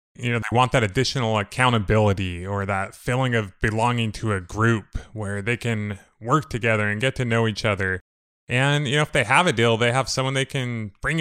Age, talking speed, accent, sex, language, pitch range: 20-39, 215 wpm, American, male, English, 105-125 Hz